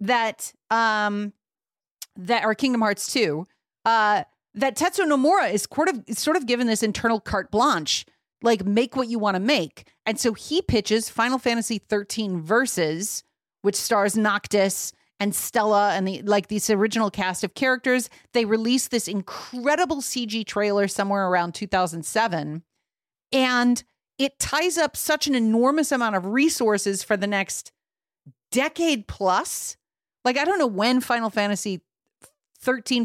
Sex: female